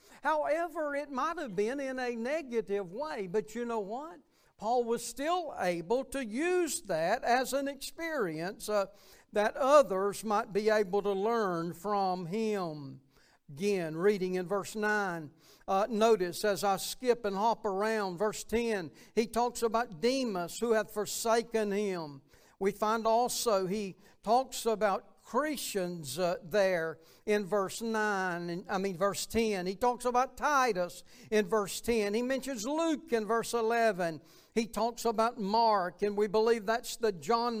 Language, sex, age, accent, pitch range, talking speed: English, male, 60-79, American, 200-245 Hz, 150 wpm